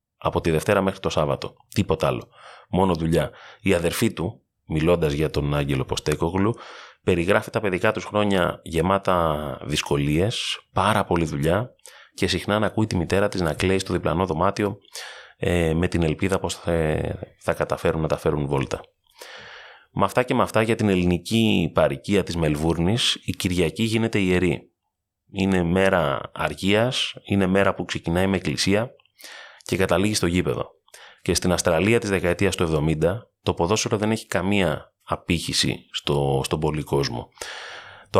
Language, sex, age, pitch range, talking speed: Greek, male, 30-49, 85-100 Hz, 150 wpm